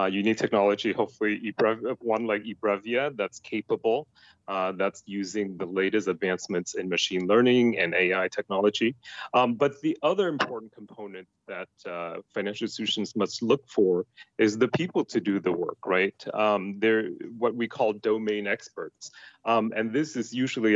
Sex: male